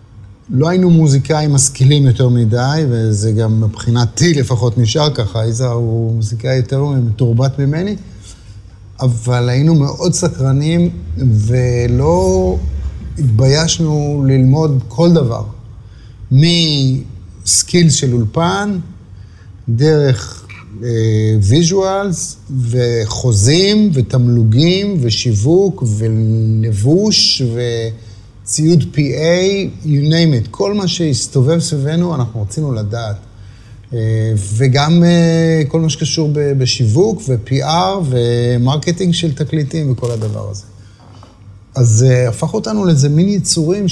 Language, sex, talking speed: Hebrew, male, 90 wpm